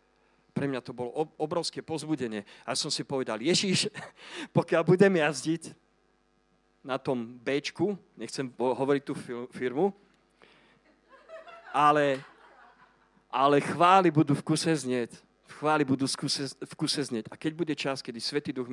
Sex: male